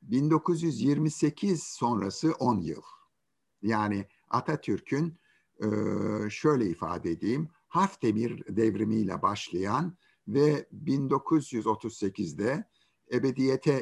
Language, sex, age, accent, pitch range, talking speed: Turkish, male, 60-79, native, 105-165 Hz, 65 wpm